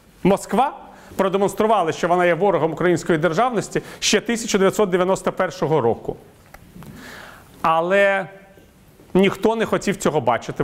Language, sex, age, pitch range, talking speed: Ukrainian, male, 40-59, 140-190 Hz, 95 wpm